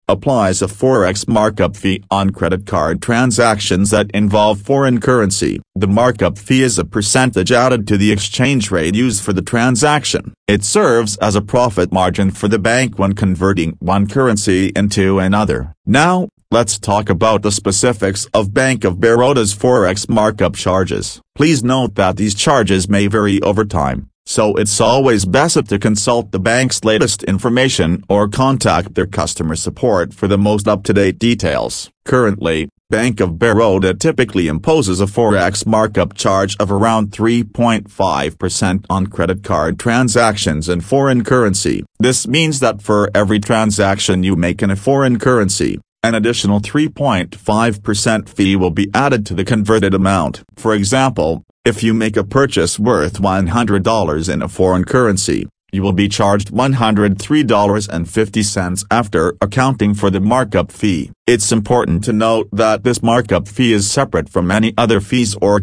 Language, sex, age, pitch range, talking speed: English, male, 40-59, 95-120 Hz, 155 wpm